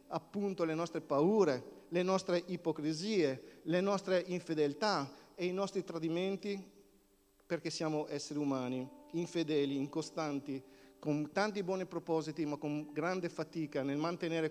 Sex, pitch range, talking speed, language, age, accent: male, 150-180 Hz, 125 wpm, Italian, 50-69, native